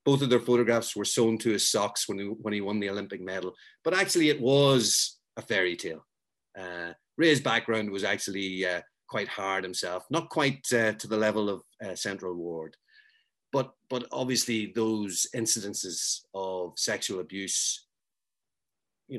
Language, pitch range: English, 100-125 Hz